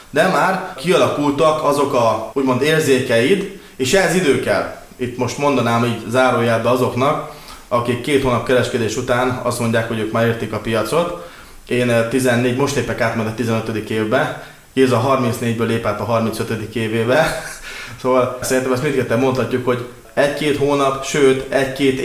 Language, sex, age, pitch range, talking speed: Hungarian, male, 20-39, 120-155 Hz, 150 wpm